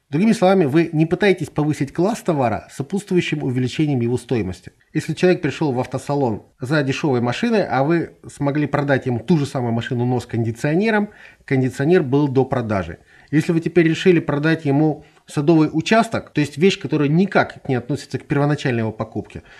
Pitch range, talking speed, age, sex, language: 130-170 Hz, 165 wpm, 30-49, male, Russian